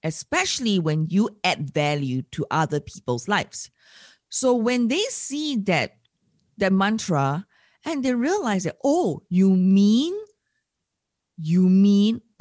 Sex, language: female, English